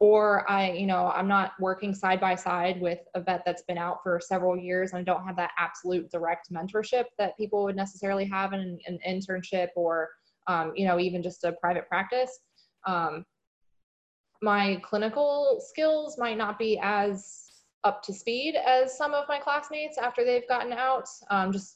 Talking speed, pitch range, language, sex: 180 wpm, 175-210 Hz, English, female